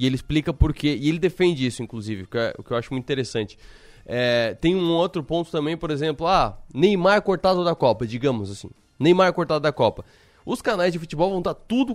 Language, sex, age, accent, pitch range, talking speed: Portuguese, male, 20-39, Brazilian, 125-165 Hz, 205 wpm